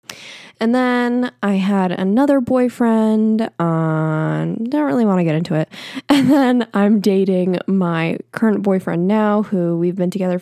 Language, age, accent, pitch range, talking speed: English, 10-29, American, 175-220 Hz, 155 wpm